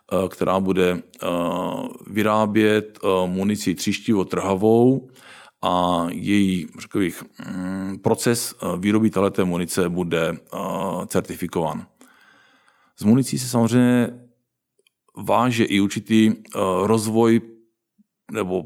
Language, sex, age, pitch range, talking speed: Czech, male, 50-69, 95-110 Hz, 75 wpm